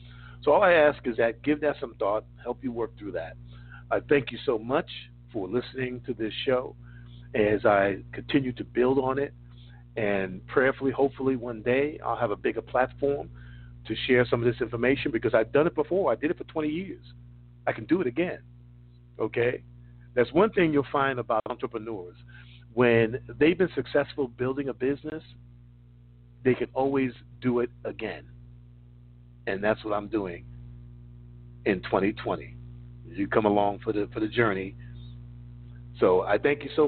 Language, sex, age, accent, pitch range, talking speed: English, male, 50-69, American, 85-125 Hz, 170 wpm